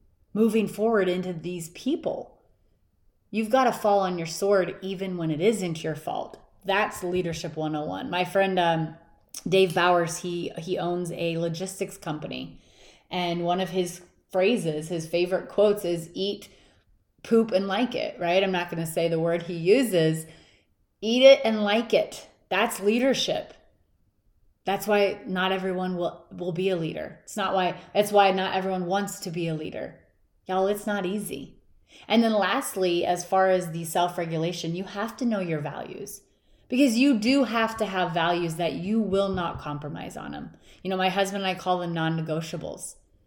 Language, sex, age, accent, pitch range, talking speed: English, female, 30-49, American, 175-210 Hz, 175 wpm